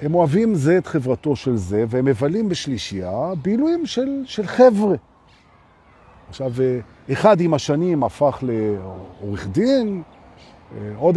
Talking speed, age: 90 wpm, 50-69